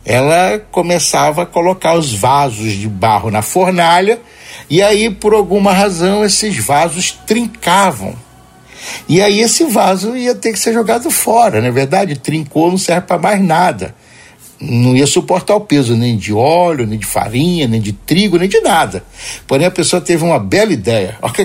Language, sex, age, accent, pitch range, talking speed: Portuguese, male, 60-79, Brazilian, 120-185 Hz, 170 wpm